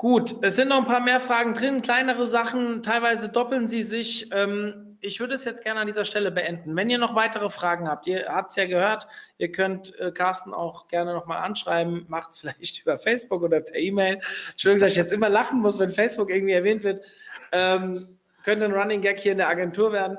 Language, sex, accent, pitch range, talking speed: German, male, German, 175-215 Hz, 220 wpm